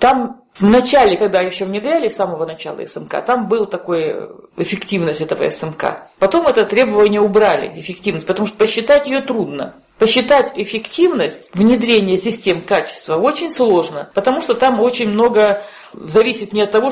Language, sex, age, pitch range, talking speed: Russian, female, 50-69, 180-230 Hz, 150 wpm